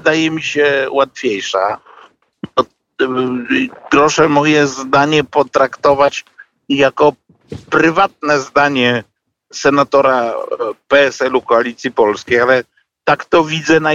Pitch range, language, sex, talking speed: 130-155 Hz, Polish, male, 85 wpm